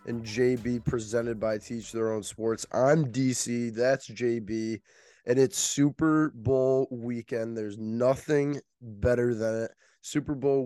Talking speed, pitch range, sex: 135 wpm, 110-130 Hz, male